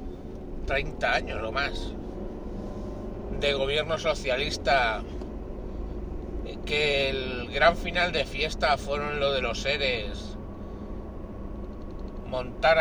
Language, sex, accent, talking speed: Spanish, male, Spanish, 90 wpm